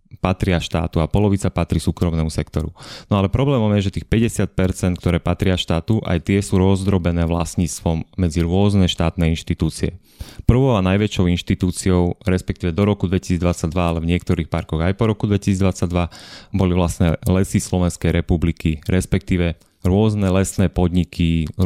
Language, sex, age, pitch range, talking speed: Slovak, male, 30-49, 85-95 Hz, 145 wpm